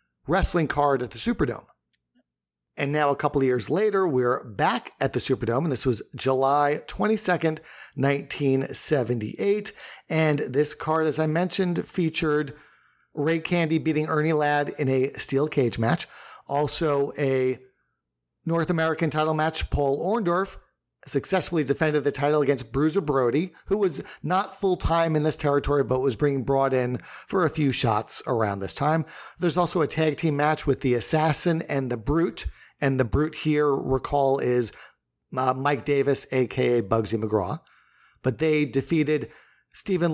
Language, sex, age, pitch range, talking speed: English, male, 40-59, 135-160 Hz, 150 wpm